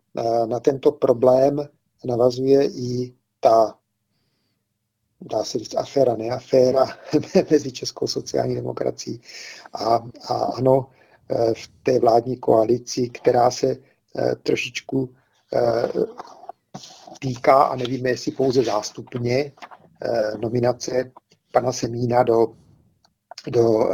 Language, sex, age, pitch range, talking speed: Czech, male, 50-69, 115-130 Hz, 90 wpm